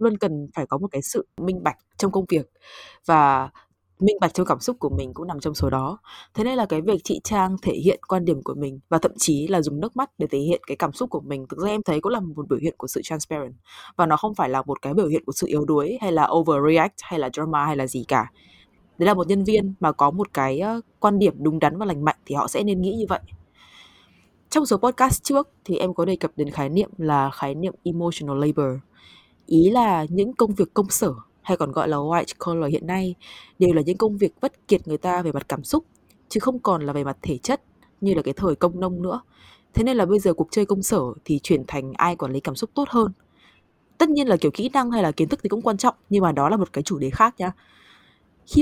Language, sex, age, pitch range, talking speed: Vietnamese, female, 20-39, 150-205 Hz, 265 wpm